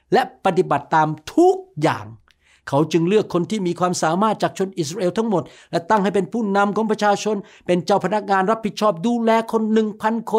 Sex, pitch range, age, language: male, 145-205 Hz, 60-79, Thai